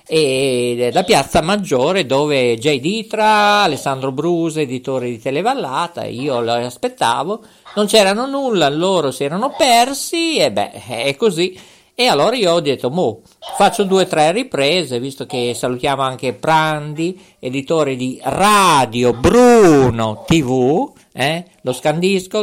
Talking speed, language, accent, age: 135 wpm, Italian, native, 50-69